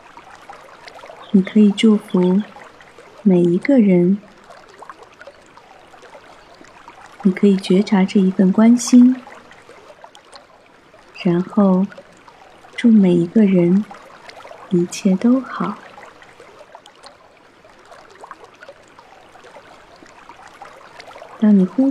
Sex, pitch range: female, 185-225 Hz